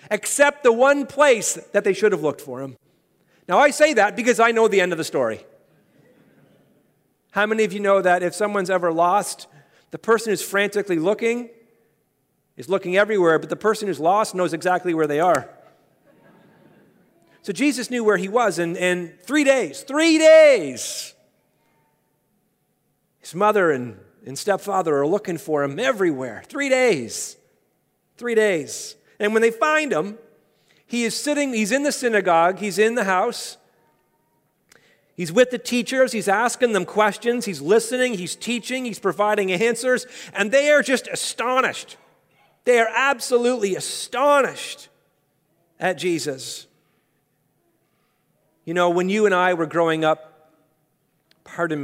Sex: male